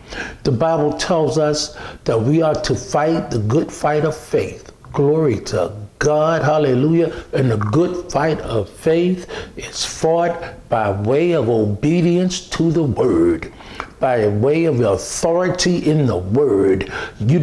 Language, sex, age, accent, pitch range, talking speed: English, male, 60-79, American, 140-180 Hz, 140 wpm